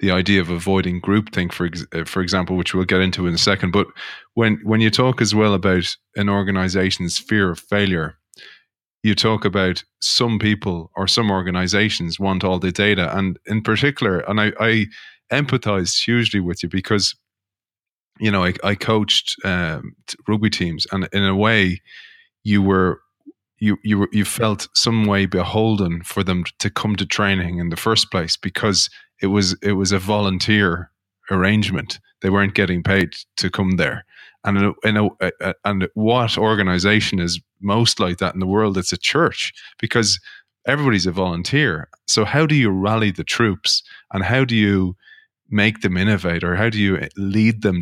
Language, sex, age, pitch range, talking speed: English, male, 20-39, 90-110 Hz, 175 wpm